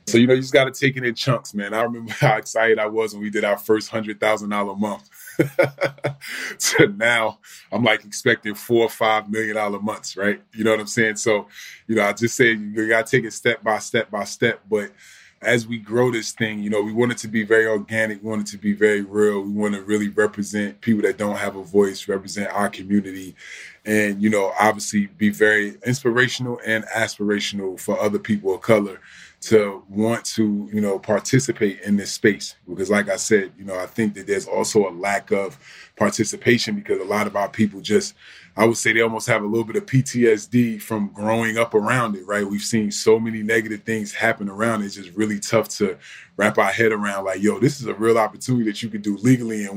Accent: American